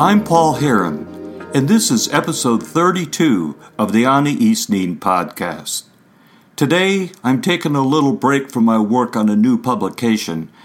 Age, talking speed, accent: 50-69, 150 wpm, American